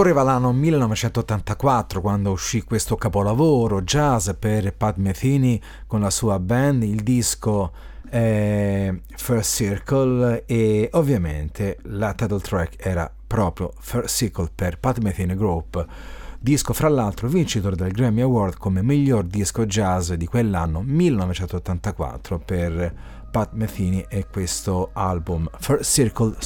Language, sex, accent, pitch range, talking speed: Italian, male, native, 100-125 Hz, 120 wpm